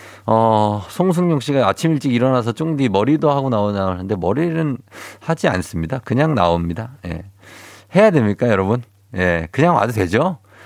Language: Korean